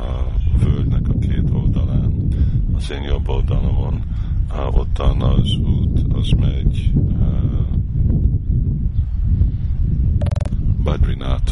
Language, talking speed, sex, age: Hungarian, 80 wpm, male, 50-69